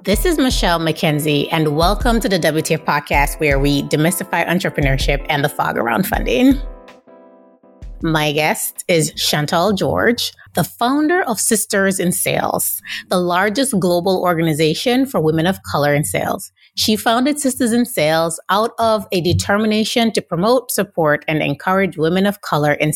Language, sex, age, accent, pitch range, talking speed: English, female, 30-49, American, 150-210 Hz, 150 wpm